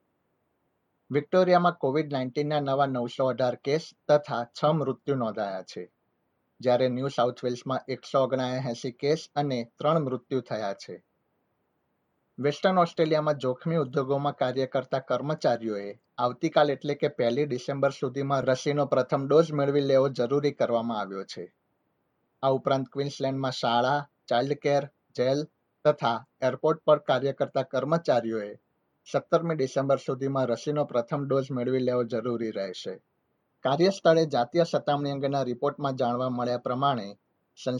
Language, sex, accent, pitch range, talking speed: Gujarati, male, native, 125-145 Hz, 60 wpm